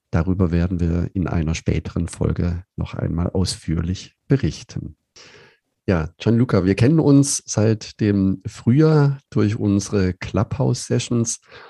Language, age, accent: German, 50-69, German